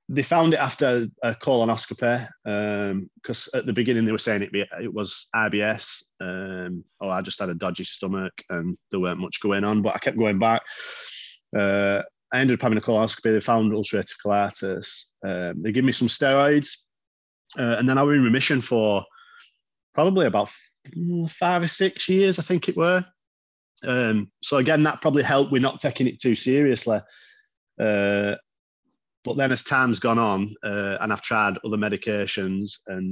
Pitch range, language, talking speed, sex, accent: 100-125 Hz, English, 180 wpm, male, British